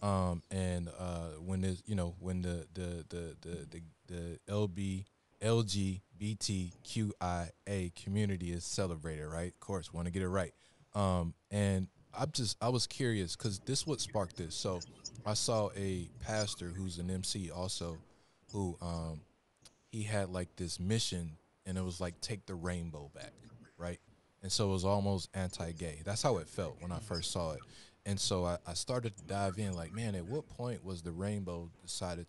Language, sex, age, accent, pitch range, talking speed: English, male, 20-39, American, 85-100 Hz, 190 wpm